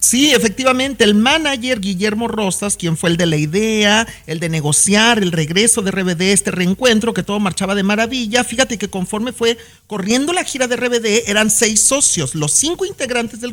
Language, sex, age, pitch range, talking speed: Spanish, male, 40-59, 190-250 Hz, 185 wpm